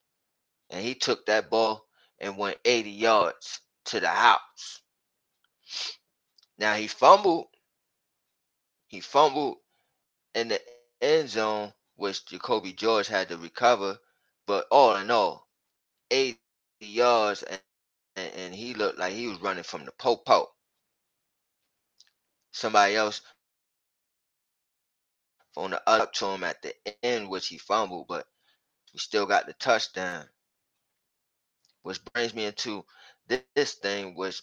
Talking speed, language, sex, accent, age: 125 wpm, English, male, American, 20-39